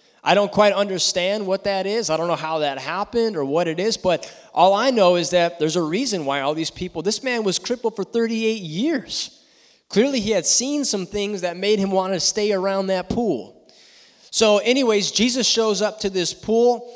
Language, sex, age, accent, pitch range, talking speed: English, male, 20-39, American, 150-210 Hz, 210 wpm